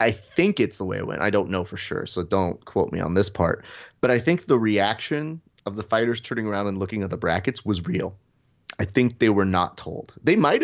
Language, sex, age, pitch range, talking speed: English, male, 30-49, 100-120 Hz, 250 wpm